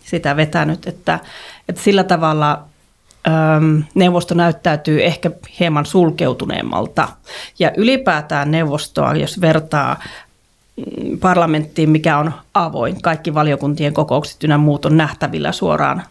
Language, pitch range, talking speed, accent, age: Finnish, 155-180 Hz, 110 wpm, native, 30-49